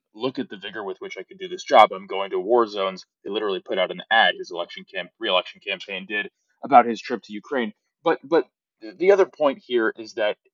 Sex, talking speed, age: male, 235 wpm, 20-39